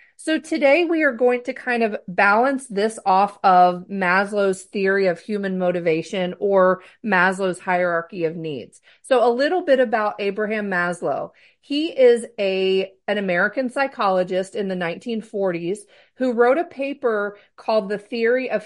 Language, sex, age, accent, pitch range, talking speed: English, female, 40-59, American, 185-240 Hz, 145 wpm